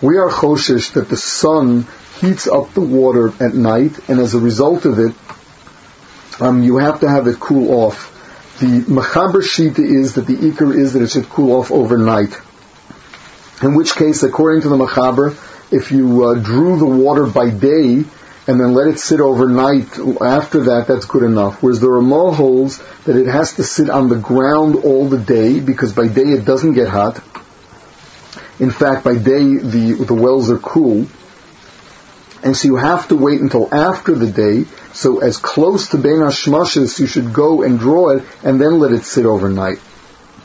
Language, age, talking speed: English, 40-59, 185 wpm